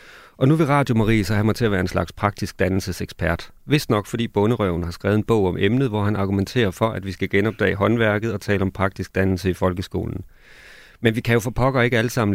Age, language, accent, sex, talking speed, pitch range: 40-59, Danish, native, male, 245 wpm, 95-115 Hz